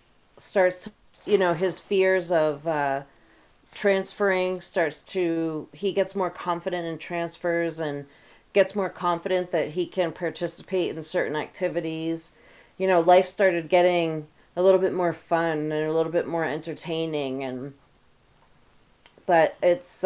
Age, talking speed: 30-49, 140 wpm